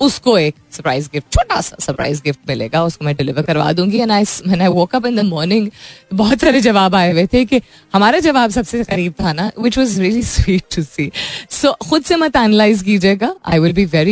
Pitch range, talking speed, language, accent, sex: 165-235 Hz, 85 wpm, Hindi, native, female